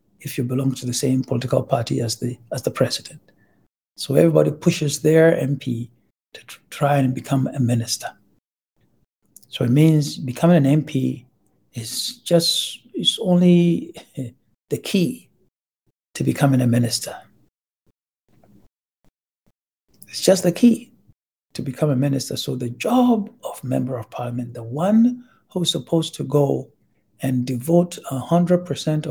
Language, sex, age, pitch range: English, male, 60-79, 125-170 Hz